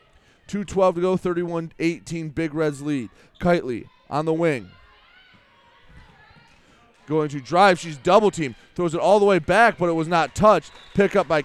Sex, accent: male, American